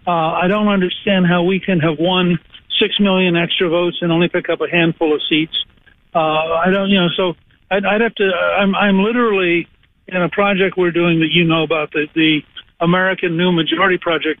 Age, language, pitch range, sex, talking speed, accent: 60-79, English, 170-200 Hz, male, 210 wpm, American